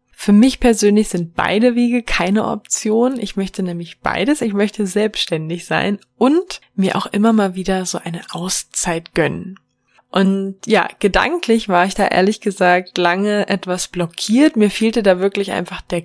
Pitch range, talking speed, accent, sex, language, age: 175-210 Hz, 160 wpm, German, female, German, 20-39